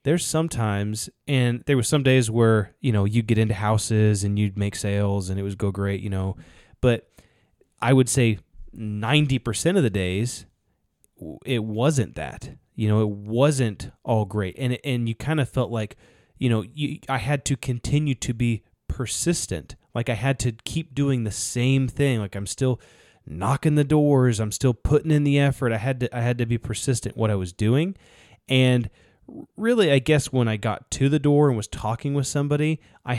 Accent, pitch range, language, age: American, 105-135 Hz, English, 20-39